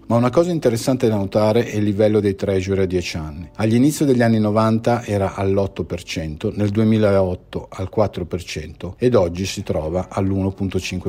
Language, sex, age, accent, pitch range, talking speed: Italian, male, 50-69, native, 95-120 Hz, 155 wpm